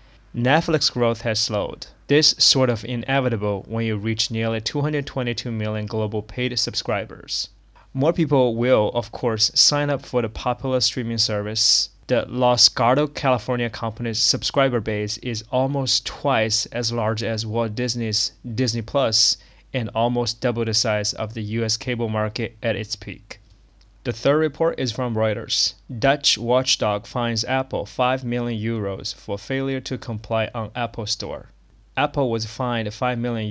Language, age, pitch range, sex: Chinese, 20-39, 110-130 Hz, male